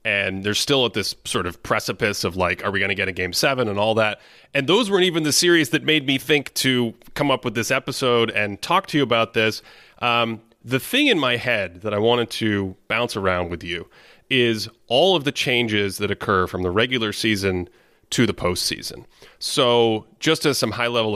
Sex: male